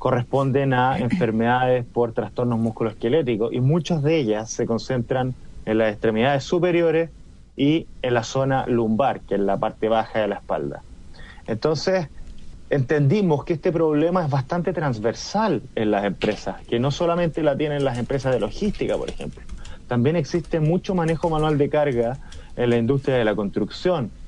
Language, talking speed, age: Spanish, 160 wpm, 30-49